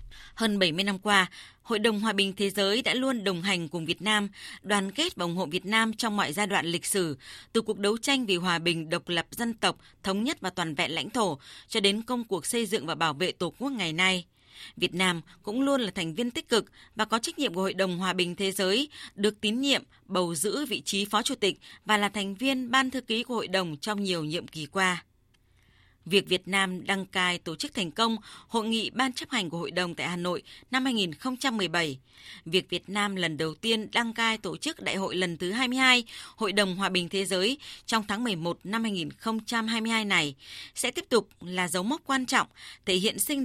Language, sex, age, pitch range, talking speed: Vietnamese, female, 20-39, 175-230 Hz, 230 wpm